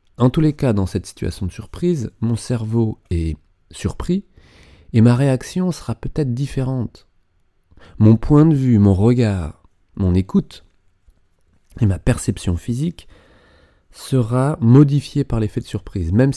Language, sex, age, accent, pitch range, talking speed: French, male, 30-49, French, 90-125 Hz, 140 wpm